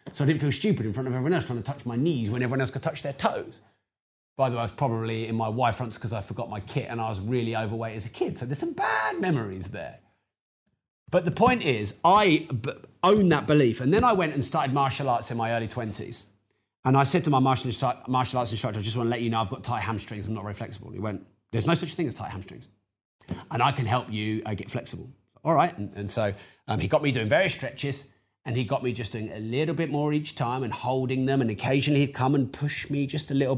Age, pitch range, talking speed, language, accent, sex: 30-49, 115-145 Hz, 265 wpm, English, British, male